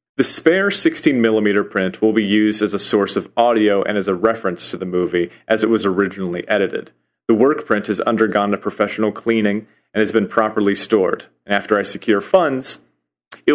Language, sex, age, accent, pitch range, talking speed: English, male, 30-49, American, 100-115 Hz, 185 wpm